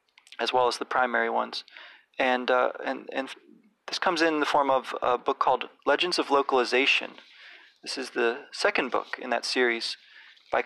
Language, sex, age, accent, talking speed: English, male, 30-49, American, 175 wpm